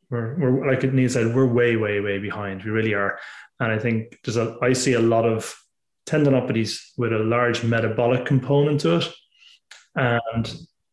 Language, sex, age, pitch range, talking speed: English, male, 20-39, 115-135 Hz, 175 wpm